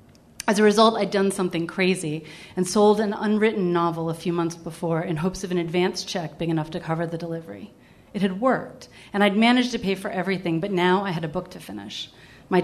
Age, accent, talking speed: 30-49, American, 225 wpm